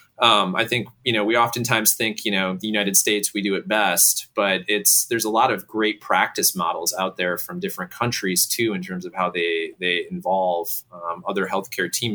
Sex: male